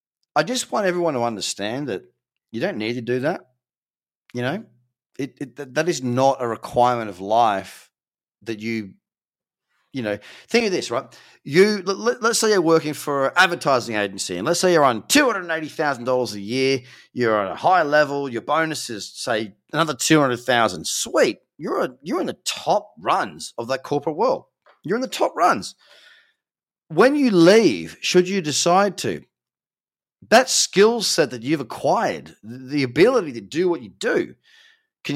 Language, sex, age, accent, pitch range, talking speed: English, male, 30-49, Australian, 120-185 Hz, 170 wpm